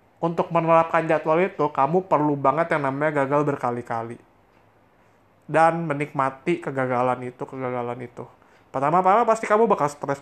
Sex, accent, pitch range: male, native, 130-160 Hz